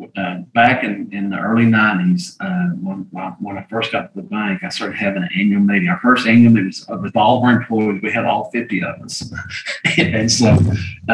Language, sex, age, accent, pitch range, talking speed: English, male, 40-59, American, 105-125 Hz, 225 wpm